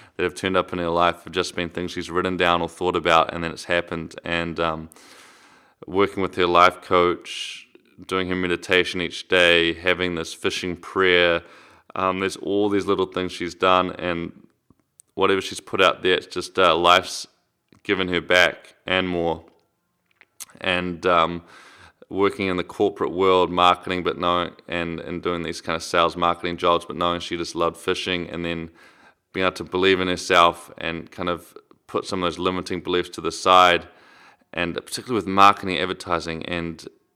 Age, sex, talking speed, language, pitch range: 20-39, male, 180 wpm, English, 85-95 Hz